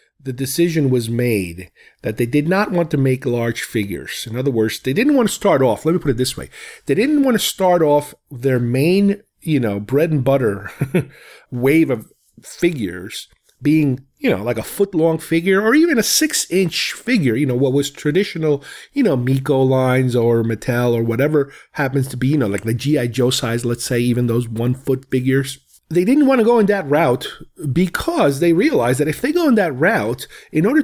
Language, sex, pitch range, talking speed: English, male, 120-180 Hz, 205 wpm